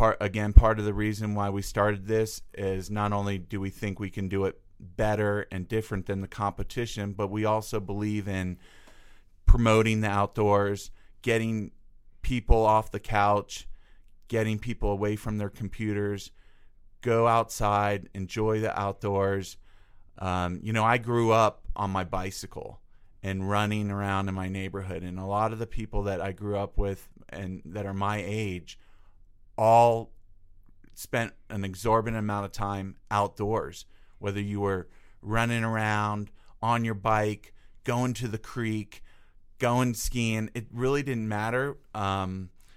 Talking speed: 150 wpm